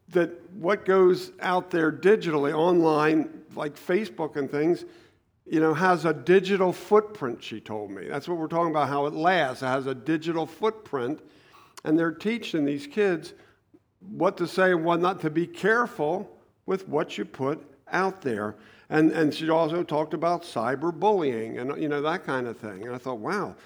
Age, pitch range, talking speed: 50-69, 140-180 Hz, 180 wpm